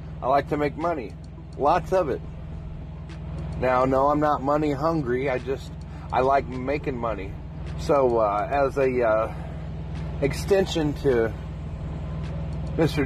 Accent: American